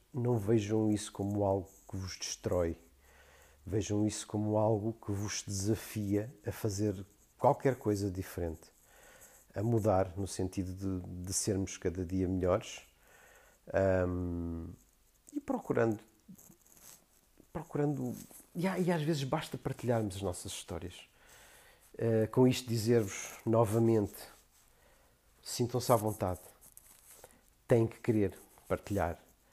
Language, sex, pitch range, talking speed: Portuguese, male, 95-125 Hz, 105 wpm